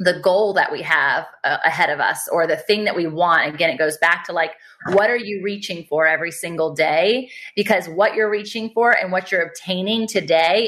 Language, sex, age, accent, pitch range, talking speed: English, female, 20-39, American, 175-215 Hz, 220 wpm